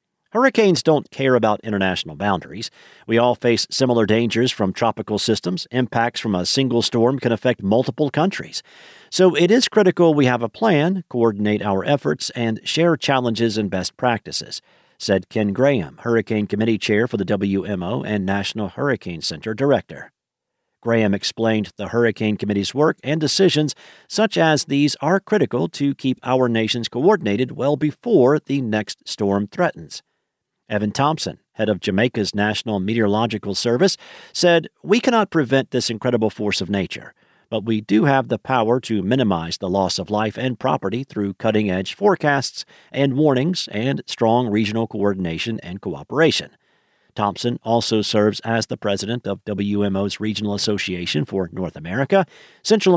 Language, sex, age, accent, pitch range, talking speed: English, male, 50-69, American, 105-140 Hz, 150 wpm